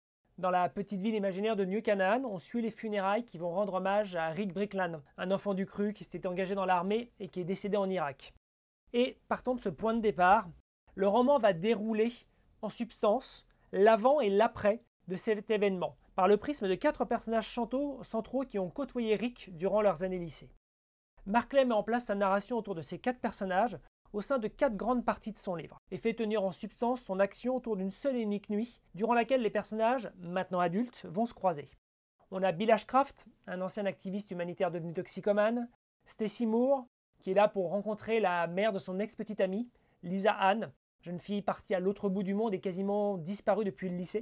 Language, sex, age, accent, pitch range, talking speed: French, male, 30-49, French, 185-225 Hz, 205 wpm